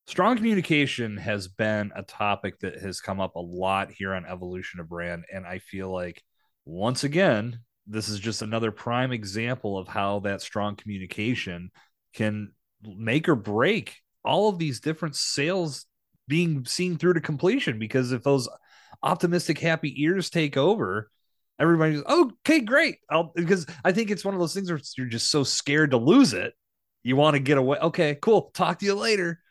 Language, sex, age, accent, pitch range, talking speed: English, male, 30-49, American, 105-155 Hz, 175 wpm